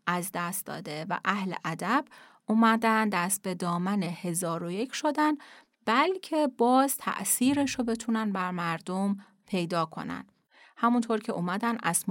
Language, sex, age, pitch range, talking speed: Persian, female, 30-49, 175-235 Hz, 125 wpm